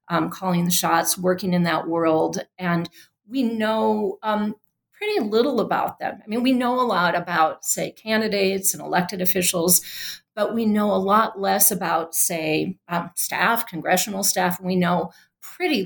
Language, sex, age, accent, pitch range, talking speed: English, female, 40-59, American, 185-240 Hz, 165 wpm